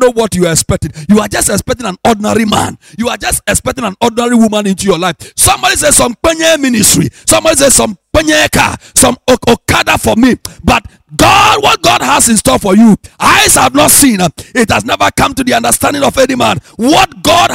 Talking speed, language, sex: 210 wpm, English, male